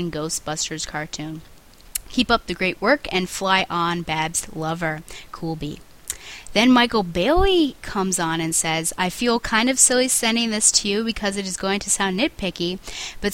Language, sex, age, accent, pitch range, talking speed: English, female, 20-39, American, 170-220 Hz, 165 wpm